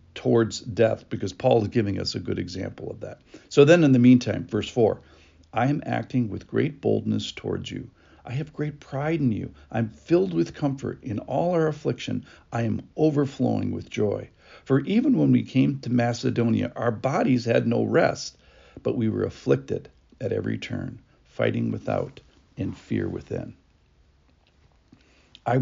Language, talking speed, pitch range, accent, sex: English, 165 wpm, 110-140 Hz, American, male